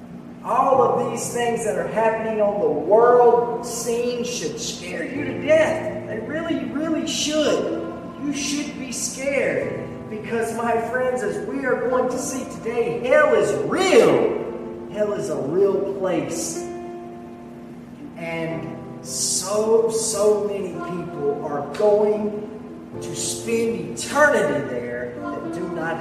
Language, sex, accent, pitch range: English, male, American, 205-255 Hz